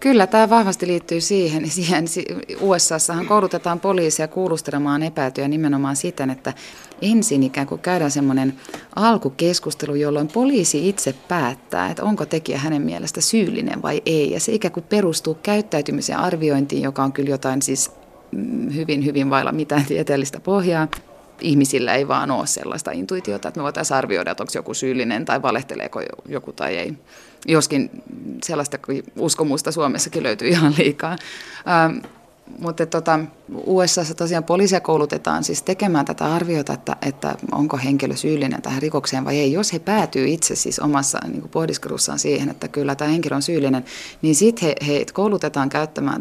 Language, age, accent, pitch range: Finnish, 30-49, native, 140-170 Hz